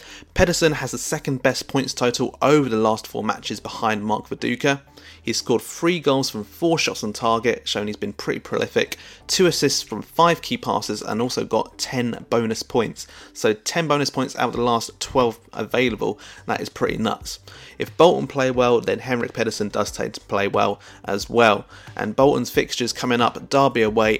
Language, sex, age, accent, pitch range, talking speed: English, male, 30-49, British, 110-135 Hz, 190 wpm